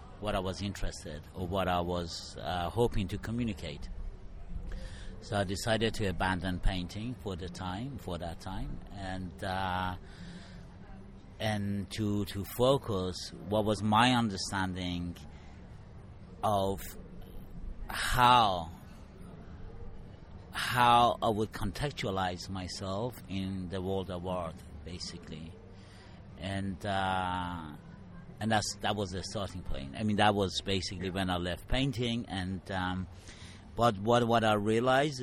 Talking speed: 125 wpm